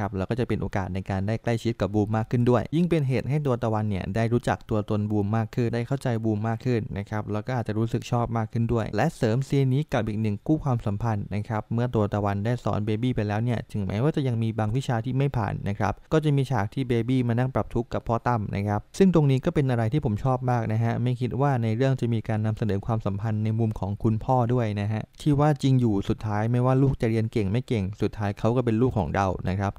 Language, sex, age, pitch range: English, male, 20-39, 105-130 Hz